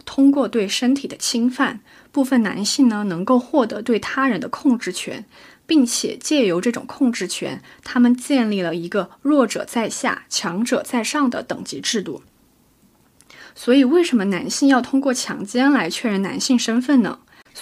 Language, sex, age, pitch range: Chinese, female, 20-39, 205-270 Hz